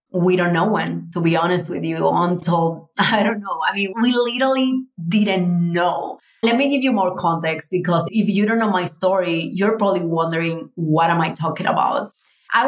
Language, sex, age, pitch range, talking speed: English, female, 30-49, 175-215 Hz, 195 wpm